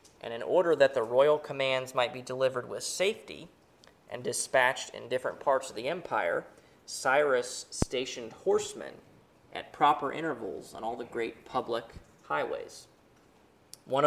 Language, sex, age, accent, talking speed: English, male, 20-39, American, 140 wpm